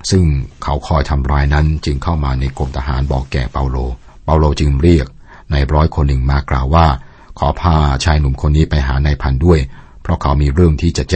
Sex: male